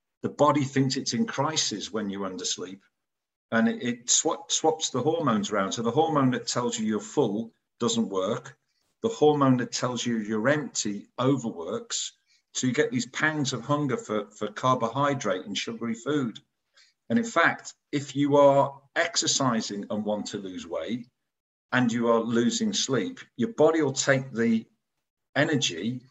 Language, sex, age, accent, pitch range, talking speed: English, male, 50-69, British, 115-145 Hz, 160 wpm